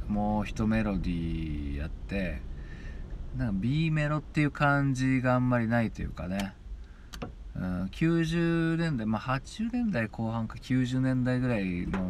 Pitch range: 85-120 Hz